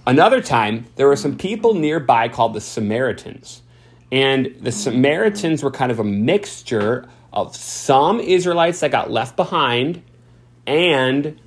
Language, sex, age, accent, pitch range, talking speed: English, male, 30-49, American, 105-150 Hz, 135 wpm